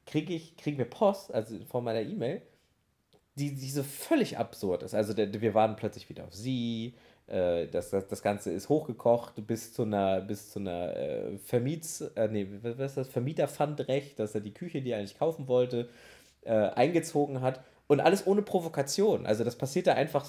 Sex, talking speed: male, 200 wpm